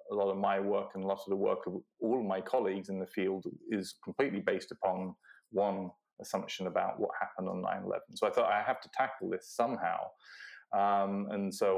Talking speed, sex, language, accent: 210 wpm, male, English, British